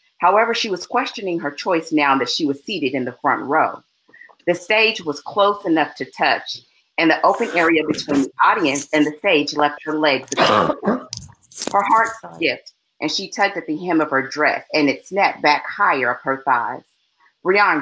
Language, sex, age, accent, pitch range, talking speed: English, female, 40-59, American, 145-205 Hz, 190 wpm